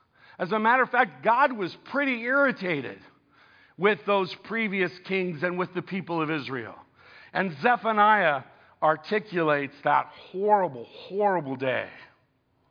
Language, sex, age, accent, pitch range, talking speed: English, male, 50-69, American, 135-215 Hz, 125 wpm